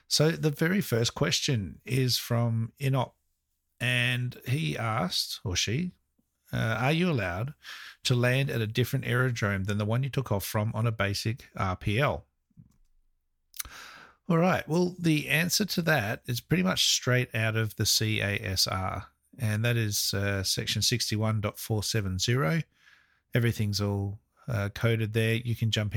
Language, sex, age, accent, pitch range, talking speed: English, male, 50-69, Australian, 100-125 Hz, 145 wpm